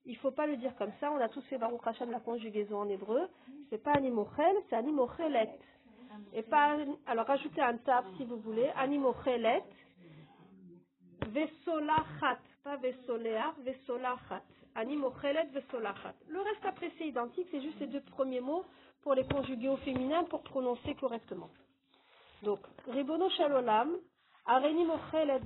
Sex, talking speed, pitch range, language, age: female, 140 wpm, 235-285 Hz, French, 40-59